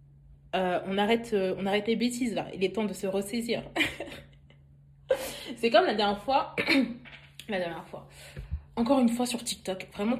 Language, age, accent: French, 20-39, French